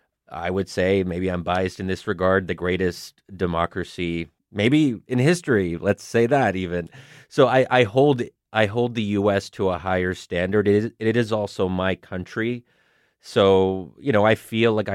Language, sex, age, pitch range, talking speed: English, male, 30-49, 95-115 Hz, 175 wpm